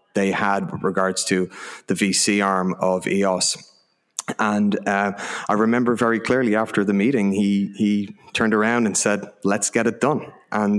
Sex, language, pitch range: male, English, 95-110 Hz